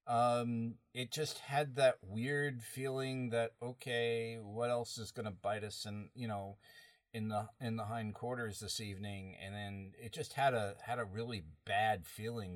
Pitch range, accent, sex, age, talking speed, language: 100-120 Hz, American, male, 40-59, 180 wpm, English